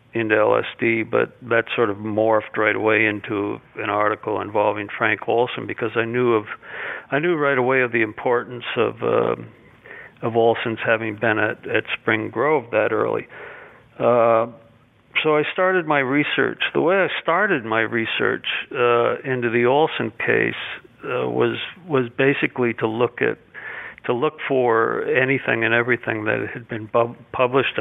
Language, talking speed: English, 160 wpm